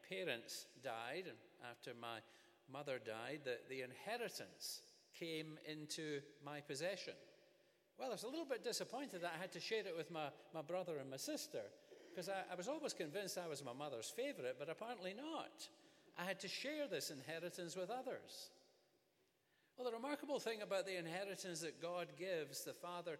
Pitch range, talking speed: 155-195 Hz, 175 wpm